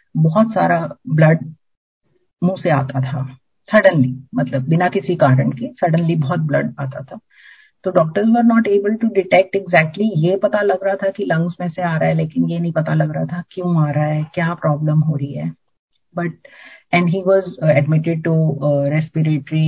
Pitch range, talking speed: 145-170 Hz, 185 wpm